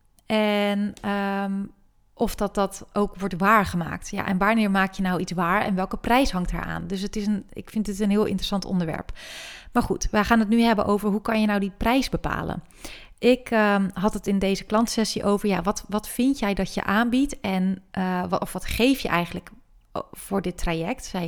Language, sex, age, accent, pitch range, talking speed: Dutch, female, 30-49, Dutch, 185-215 Hz, 210 wpm